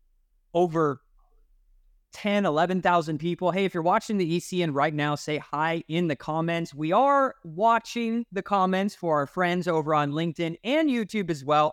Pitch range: 130-185 Hz